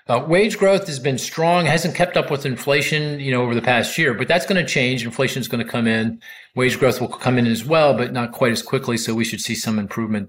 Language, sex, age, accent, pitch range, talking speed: English, male, 40-59, American, 115-140 Hz, 270 wpm